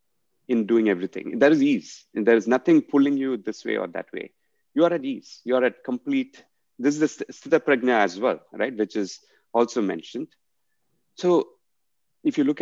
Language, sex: English, male